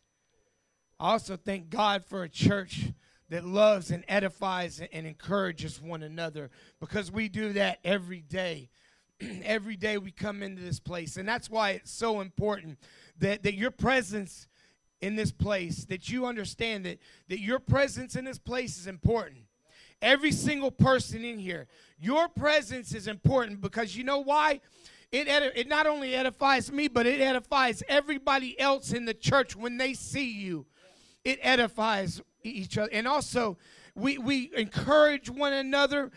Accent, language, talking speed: American, English, 160 wpm